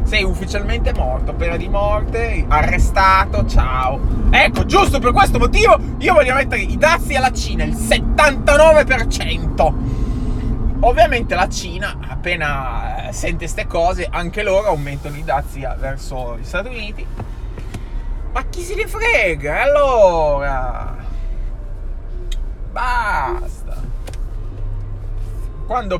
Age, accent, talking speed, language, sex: 20-39, native, 105 wpm, Italian, male